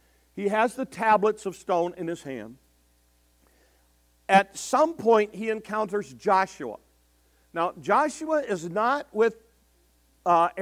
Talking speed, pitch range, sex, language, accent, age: 120 wpm, 140-215 Hz, male, English, American, 50-69